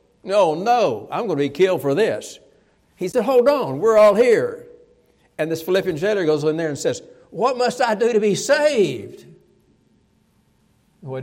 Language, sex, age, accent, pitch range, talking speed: English, male, 60-79, American, 140-195 Hz, 175 wpm